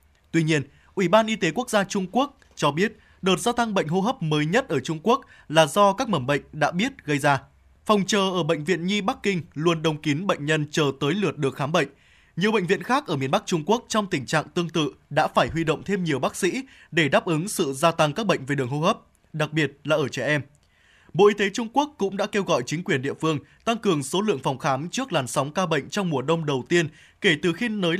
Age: 20-39